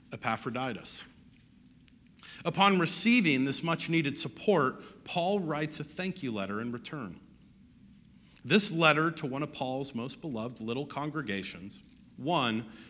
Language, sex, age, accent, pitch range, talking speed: English, male, 50-69, American, 120-180 Hz, 120 wpm